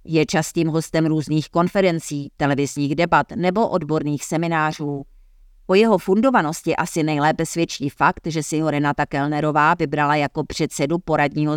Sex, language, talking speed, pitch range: female, Czech, 130 wpm, 140-165 Hz